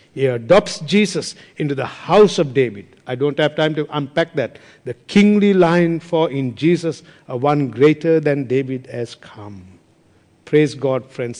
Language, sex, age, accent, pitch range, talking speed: English, male, 60-79, Indian, 125-165 Hz, 165 wpm